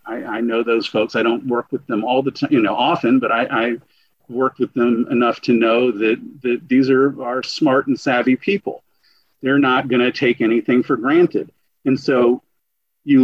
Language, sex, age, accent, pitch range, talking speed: English, male, 50-69, American, 125-180 Hz, 205 wpm